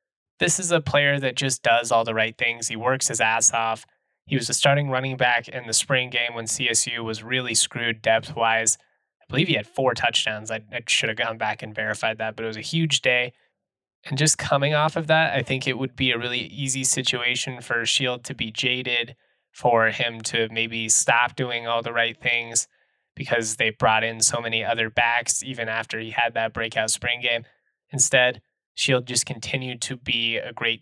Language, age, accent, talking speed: English, 20-39, American, 210 wpm